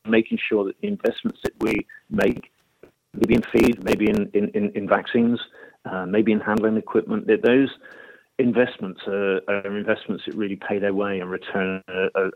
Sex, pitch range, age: male, 100-120 Hz, 40-59